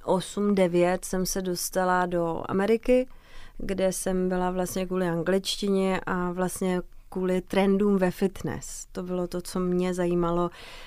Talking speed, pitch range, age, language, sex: 125 wpm, 170-185 Hz, 30-49, Czech, female